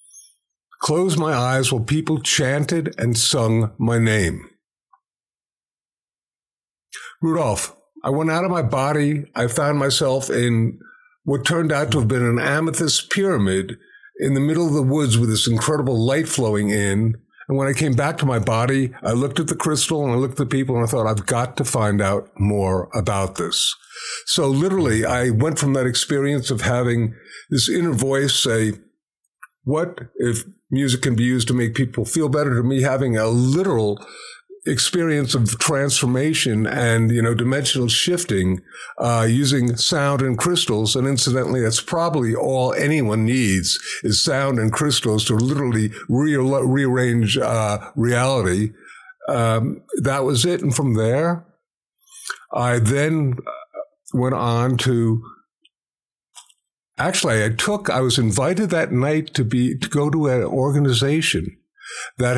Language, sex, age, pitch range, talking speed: English, male, 50-69, 115-150 Hz, 155 wpm